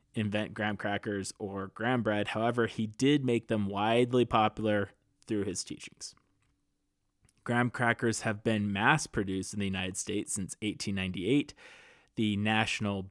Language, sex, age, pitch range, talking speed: English, male, 20-39, 105-130 Hz, 135 wpm